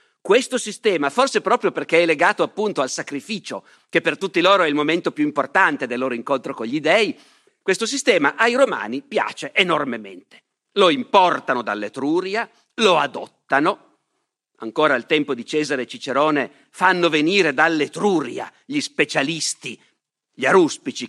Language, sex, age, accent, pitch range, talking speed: Italian, male, 50-69, native, 135-195 Hz, 140 wpm